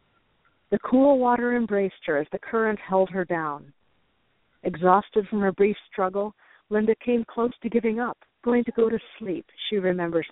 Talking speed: 170 wpm